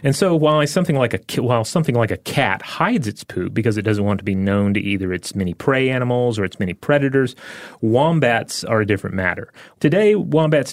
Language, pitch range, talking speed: English, 100-135 Hz, 220 wpm